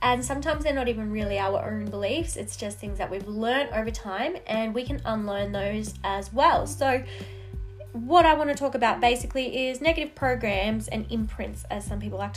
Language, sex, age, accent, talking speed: English, female, 20-39, Australian, 195 wpm